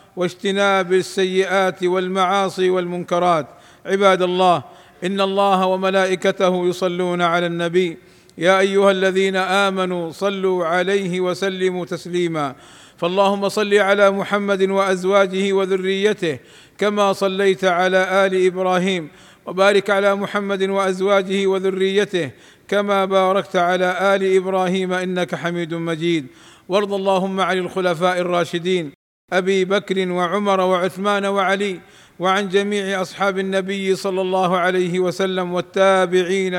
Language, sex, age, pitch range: Arabic, male, 50-69, 180-195 Hz